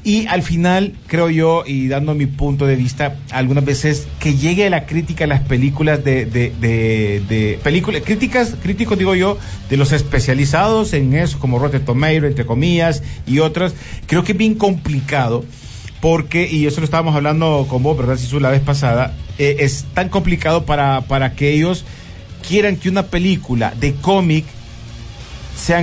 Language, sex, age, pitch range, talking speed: Spanish, male, 40-59, 130-160 Hz, 175 wpm